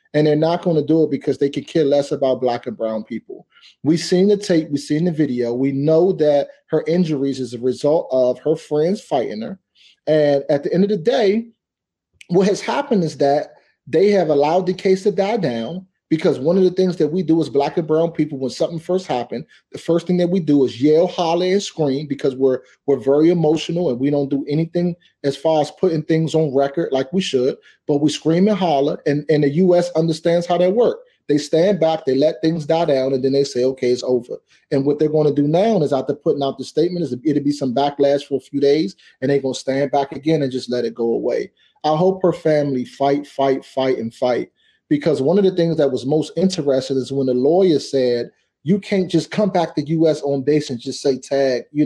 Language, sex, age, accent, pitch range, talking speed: English, male, 30-49, American, 140-175 Hz, 240 wpm